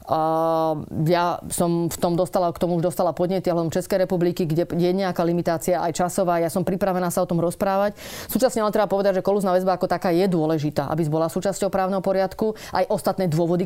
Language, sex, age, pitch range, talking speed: Slovak, female, 30-49, 170-195 Hz, 205 wpm